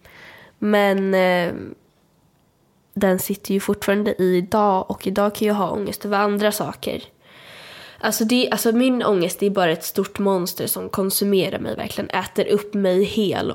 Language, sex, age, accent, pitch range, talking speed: English, female, 10-29, Swedish, 195-220 Hz, 160 wpm